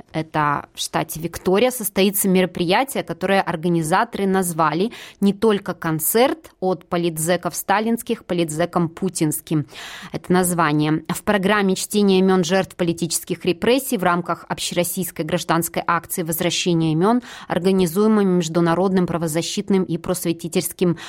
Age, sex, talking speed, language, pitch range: 20-39, female, 110 wpm, Russian, 170-205 Hz